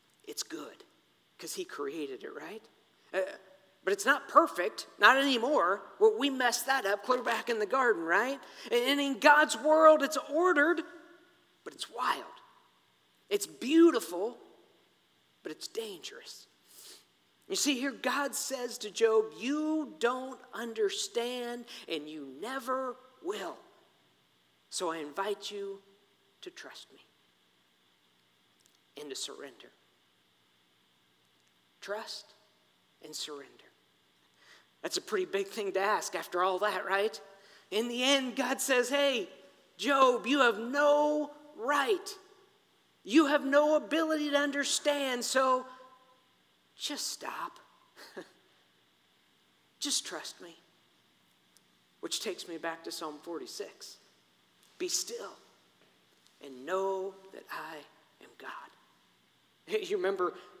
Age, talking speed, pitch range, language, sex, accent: 50-69, 115 wpm, 185-310 Hz, English, male, American